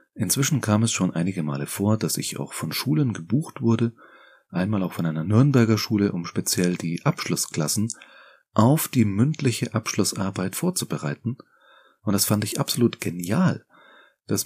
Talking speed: 150 wpm